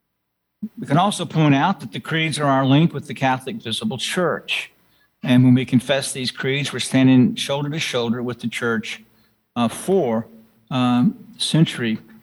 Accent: American